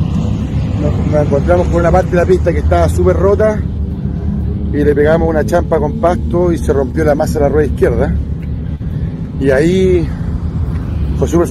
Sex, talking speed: male, 160 wpm